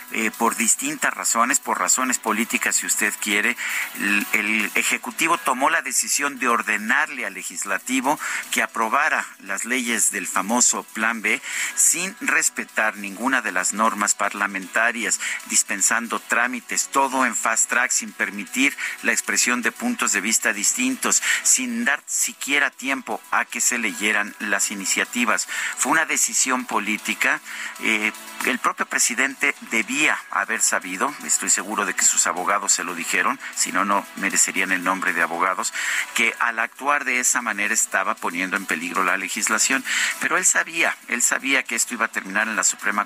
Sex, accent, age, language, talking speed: male, Mexican, 50-69, Spanish, 155 wpm